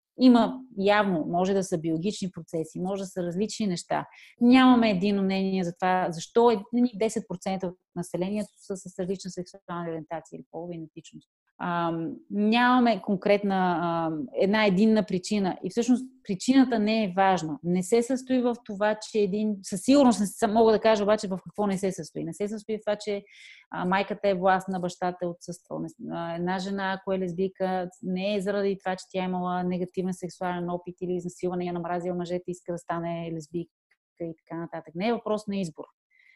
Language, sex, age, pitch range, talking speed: Bulgarian, female, 30-49, 175-215 Hz, 175 wpm